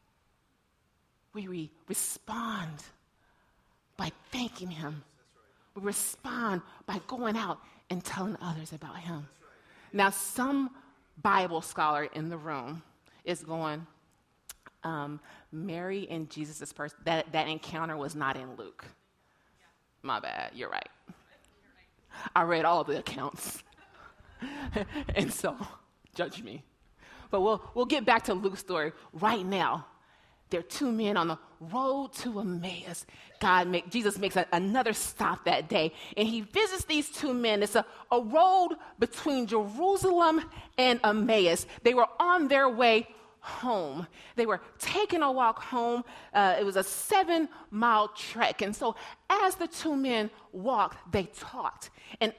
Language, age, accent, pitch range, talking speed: English, 30-49, American, 170-255 Hz, 135 wpm